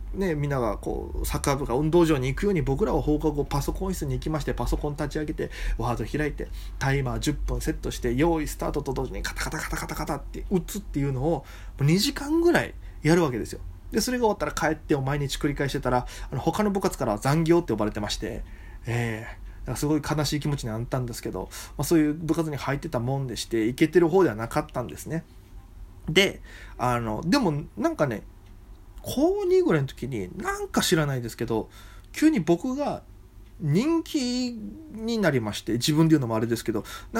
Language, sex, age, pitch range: Japanese, male, 20-39, 115-170 Hz